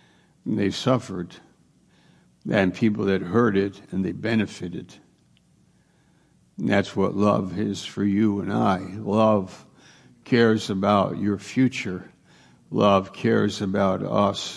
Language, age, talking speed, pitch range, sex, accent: English, 60-79, 115 wpm, 100-115 Hz, male, American